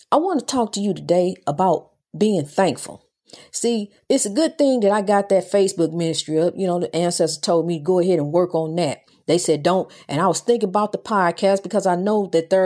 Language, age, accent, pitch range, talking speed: English, 40-59, American, 175-215 Hz, 230 wpm